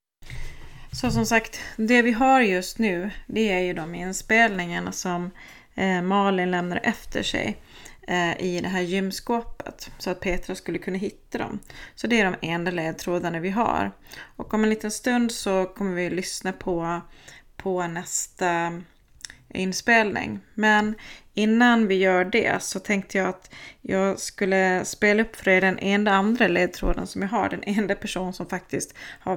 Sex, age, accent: female, 30-49, native